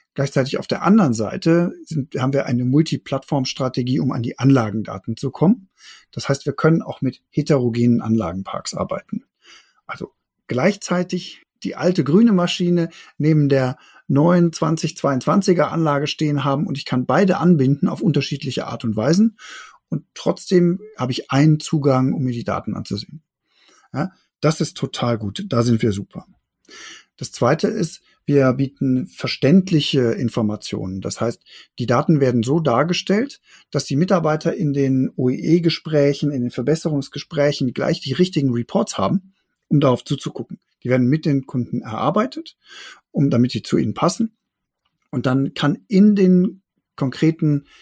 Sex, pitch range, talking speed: male, 130-170 Hz, 150 wpm